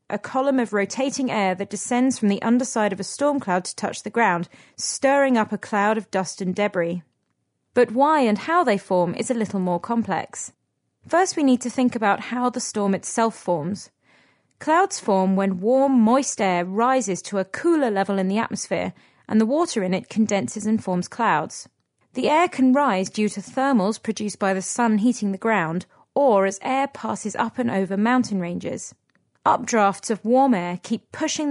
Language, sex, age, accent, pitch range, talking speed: English, female, 30-49, British, 195-255 Hz, 190 wpm